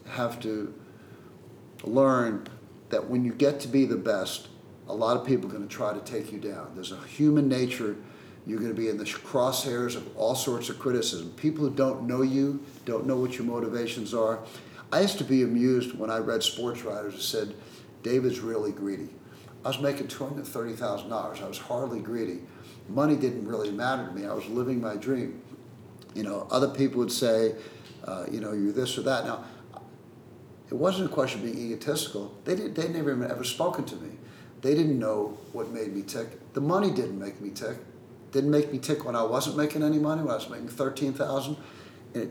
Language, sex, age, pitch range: English, male, 50-69, 110-135 Hz